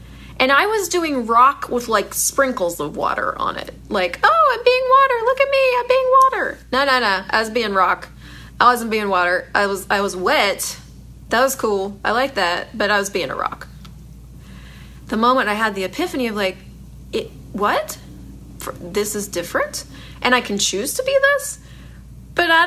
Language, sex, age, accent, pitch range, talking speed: English, female, 30-49, American, 200-320 Hz, 195 wpm